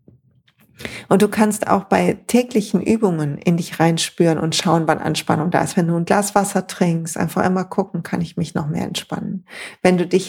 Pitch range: 185-230 Hz